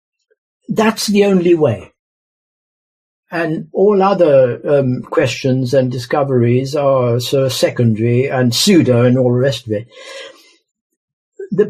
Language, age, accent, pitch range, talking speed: English, 60-79, British, 125-205 Hz, 120 wpm